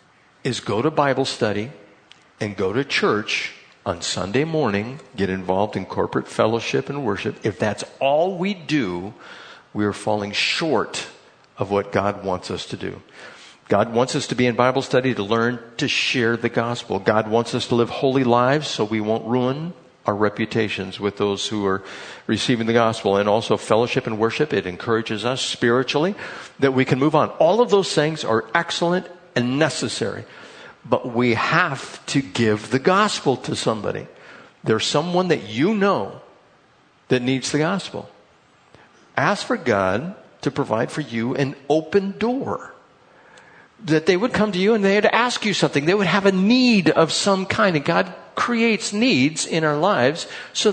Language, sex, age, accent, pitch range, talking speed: English, male, 60-79, American, 115-190 Hz, 175 wpm